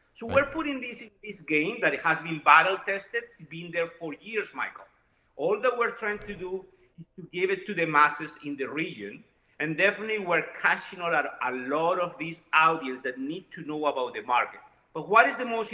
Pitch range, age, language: 160-210 Hz, 50-69, English